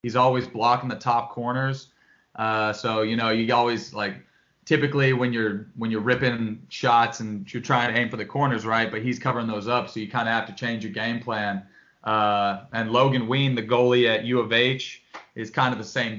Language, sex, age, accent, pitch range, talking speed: English, male, 20-39, American, 110-125 Hz, 220 wpm